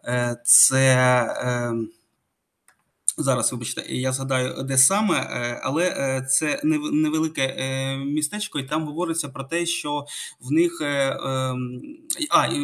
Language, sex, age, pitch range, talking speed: Ukrainian, male, 20-39, 130-155 Hz, 95 wpm